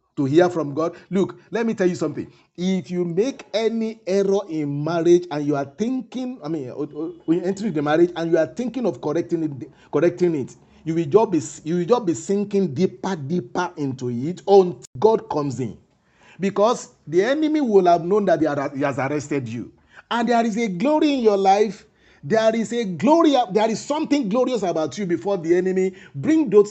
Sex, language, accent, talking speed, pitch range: male, English, Nigerian, 200 wpm, 160-220 Hz